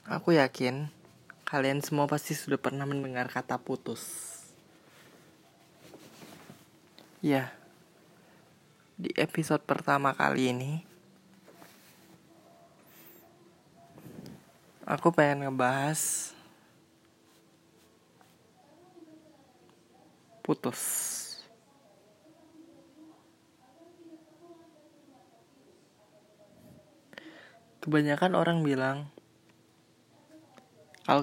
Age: 20-39